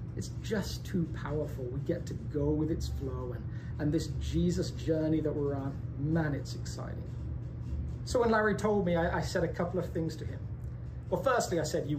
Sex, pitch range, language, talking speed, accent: male, 105-165 Hz, English, 205 wpm, British